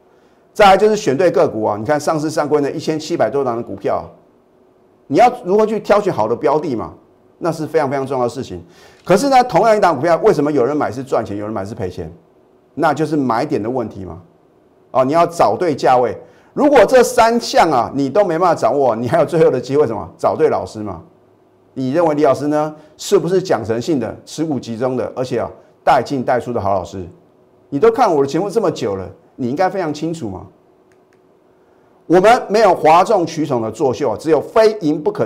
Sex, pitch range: male, 130-205 Hz